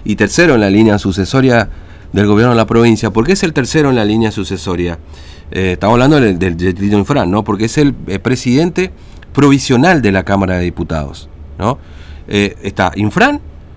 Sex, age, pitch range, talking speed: male, 40-59, 90-130 Hz, 185 wpm